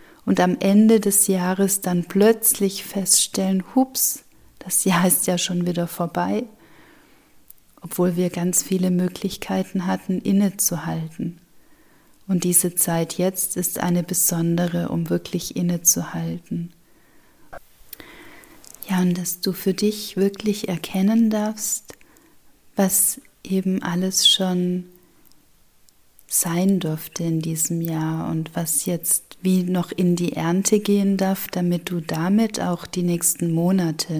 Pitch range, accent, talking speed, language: 170-195 Hz, German, 120 wpm, German